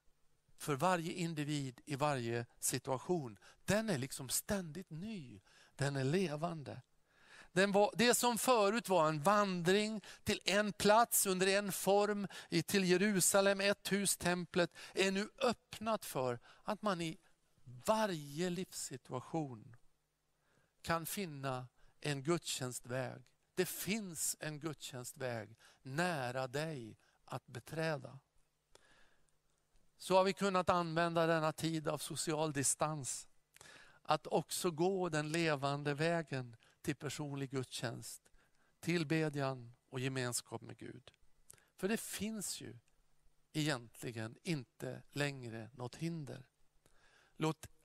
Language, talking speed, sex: Swedish, 110 wpm, male